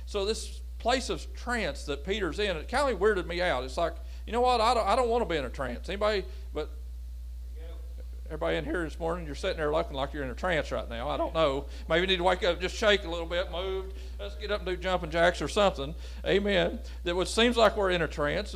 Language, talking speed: English, 255 wpm